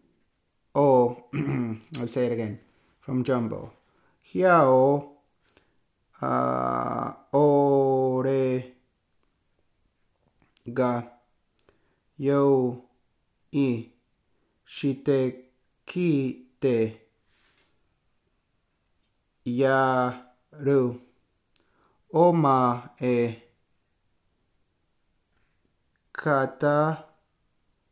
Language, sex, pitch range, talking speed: English, male, 110-140 Hz, 35 wpm